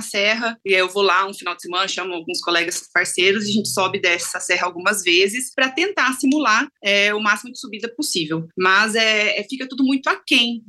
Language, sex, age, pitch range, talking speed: Portuguese, female, 20-39, 205-260 Hz, 210 wpm